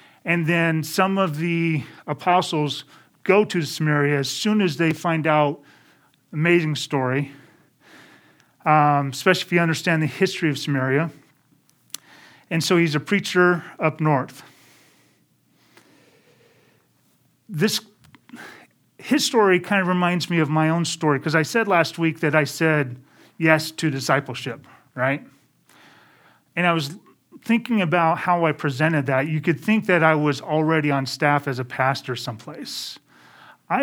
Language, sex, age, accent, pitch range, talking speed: English, male, 40-59, American, 140-170 Hz, 140 wpm